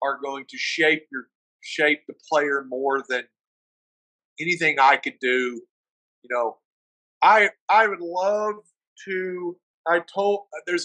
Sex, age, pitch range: male, 40-59, 140-180 Hz